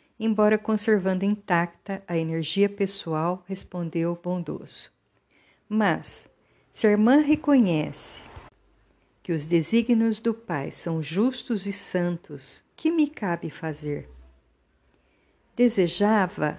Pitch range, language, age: 155-205 Hz, Portuguese, 50-69